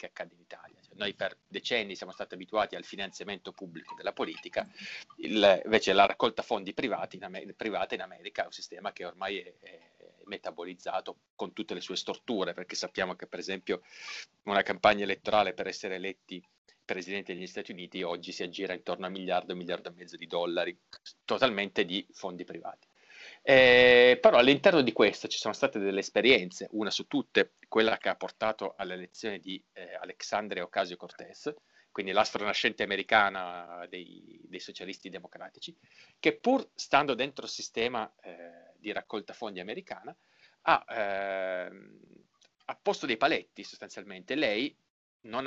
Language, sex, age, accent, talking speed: Italian, male, 40-59, native, 160 wpm